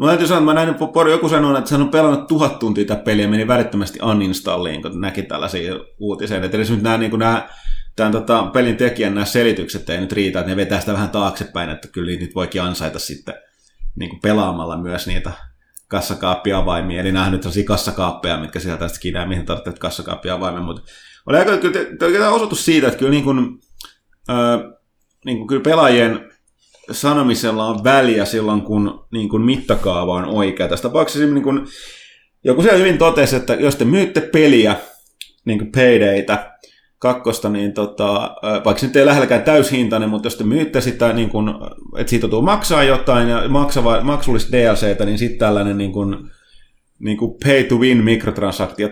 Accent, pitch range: native, 100-130 Hz